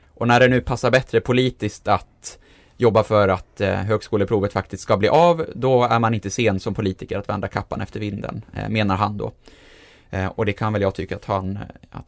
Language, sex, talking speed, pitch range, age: Swedish, male, 195 wpm, 100-125 Hz, 20-39